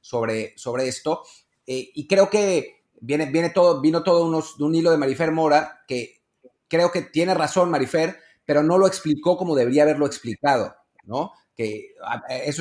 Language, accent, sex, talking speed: Spanish, Mexican, male, 165 wpm